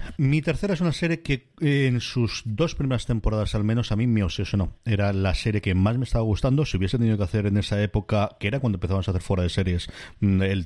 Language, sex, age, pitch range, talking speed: Spanish, male, 30-49, 95-120 Hz, 260 wpm